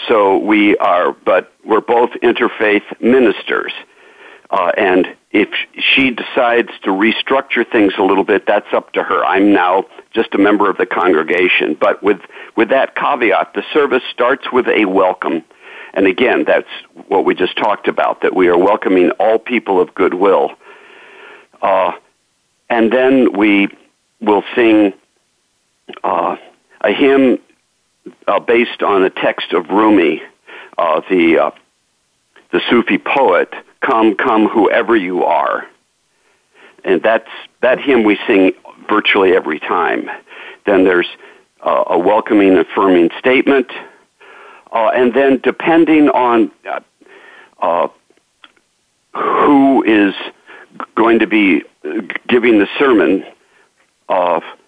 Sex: male